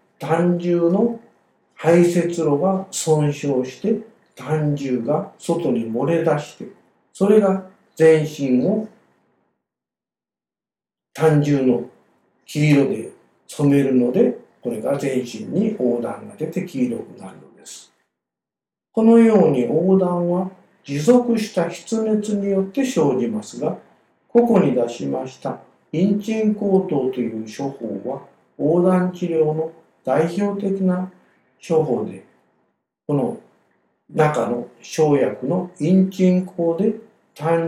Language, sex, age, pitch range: Japanese, male, 50-69, 130-190 Hz